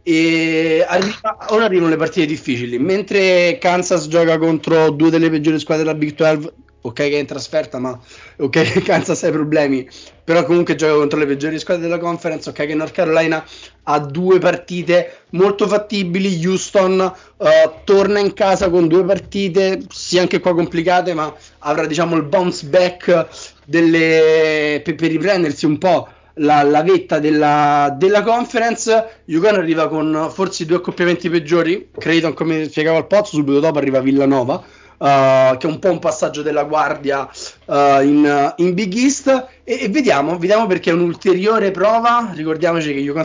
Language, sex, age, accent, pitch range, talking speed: Italian, male, 20-39, native, 145-180 Hz, 165 wpm